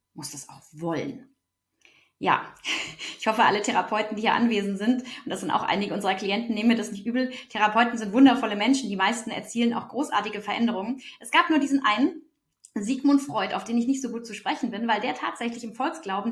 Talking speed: 205 wpm